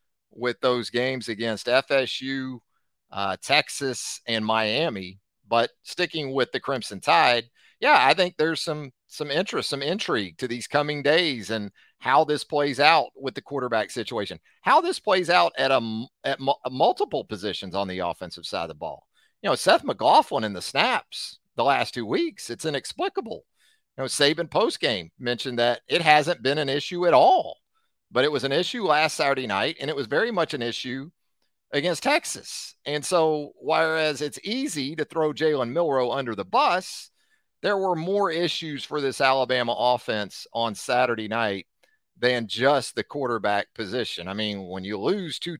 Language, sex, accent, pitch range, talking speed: English, male, American, 115-160 Hz, 170 wpm